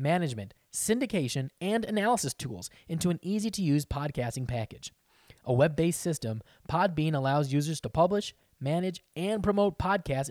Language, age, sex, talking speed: English, 20-39, male, 130 wpm